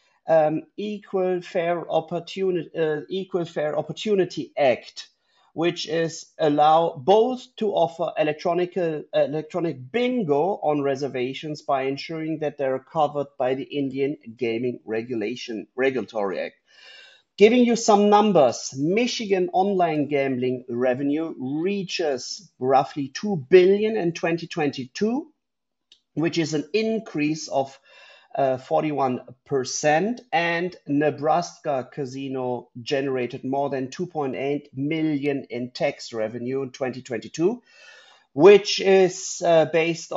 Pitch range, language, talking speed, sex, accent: 135-180 Hz, English, 105 wpm, male, German